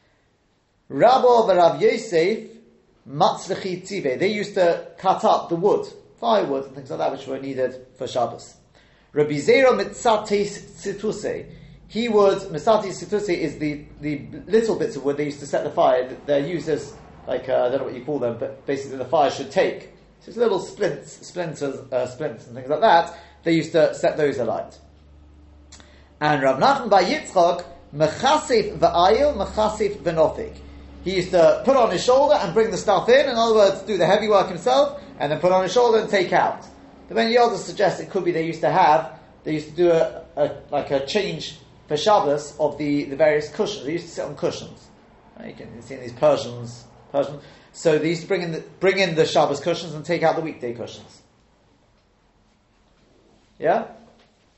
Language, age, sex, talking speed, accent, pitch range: English, 40-59, male, 185 wpm, British, 140-200 Hz